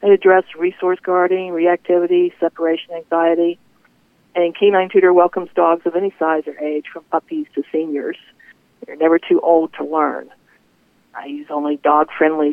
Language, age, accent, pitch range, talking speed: English, 50-69, American, 155-180 Hz, 150 wpm